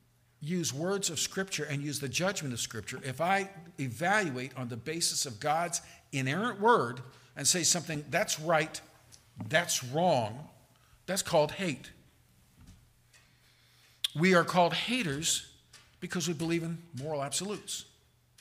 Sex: male